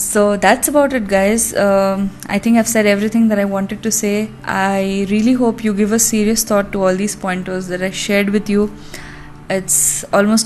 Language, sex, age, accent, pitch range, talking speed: English, female, 20-39, Indian, 195-220 Hz, 200 wpm